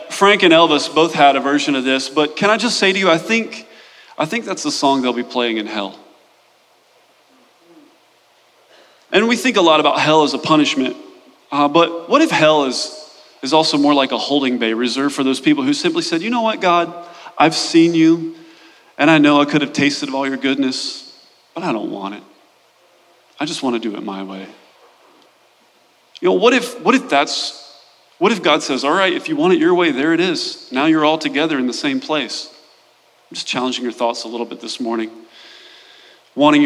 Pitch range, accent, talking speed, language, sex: 145-230 Hz, American, 215 wpm, English, male